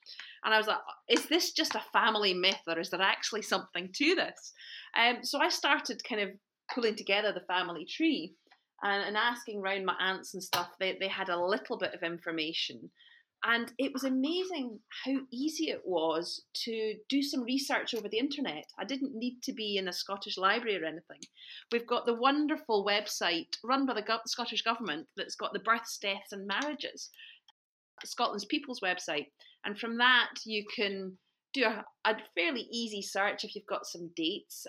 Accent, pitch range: British, 200-265 Hz